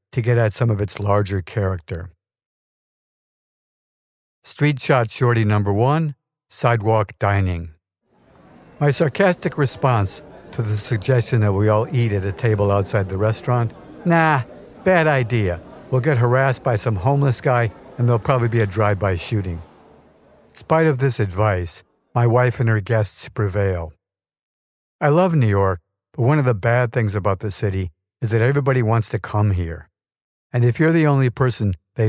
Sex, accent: male, American